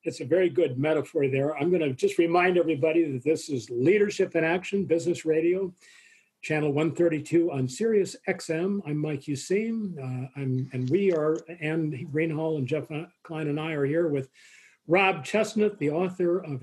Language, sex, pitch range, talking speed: English, male, 150-180 Hz, 170 wpm